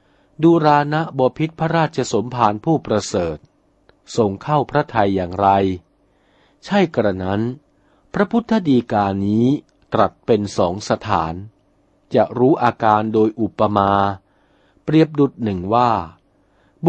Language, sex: Thai, male